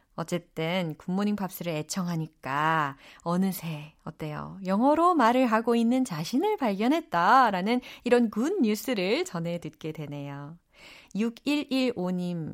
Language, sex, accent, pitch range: Korean, female, native, 165-275 Hz